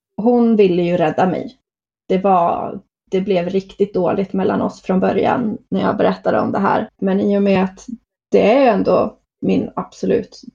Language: Swedish